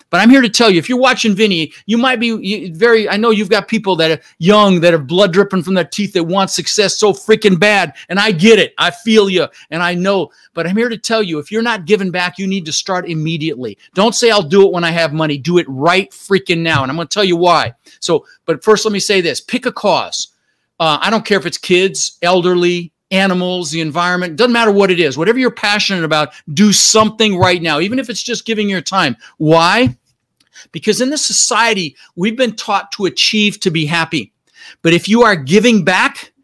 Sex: male